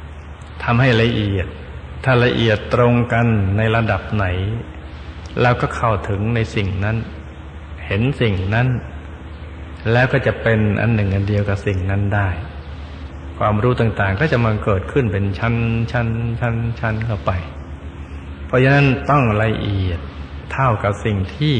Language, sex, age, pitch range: Thai, male, 60-79, 75-110 Hz